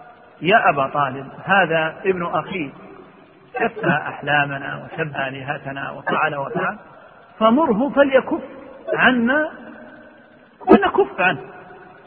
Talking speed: 85 wpm